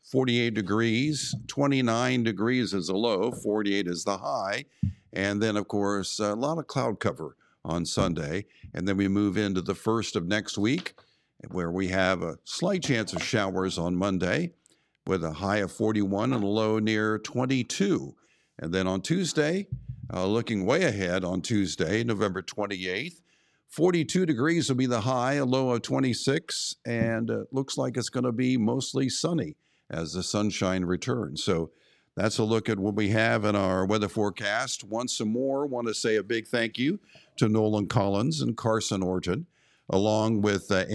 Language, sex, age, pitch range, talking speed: English, male, 50-69, 100-125 Hz, 175 wpm